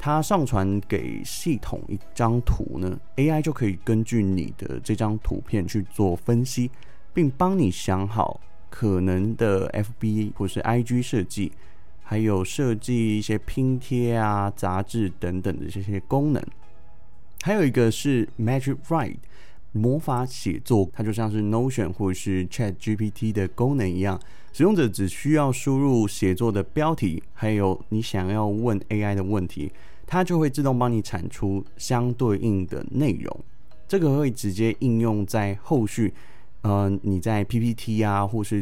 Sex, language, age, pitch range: male, Chinese, 20-39, 95-120 Hz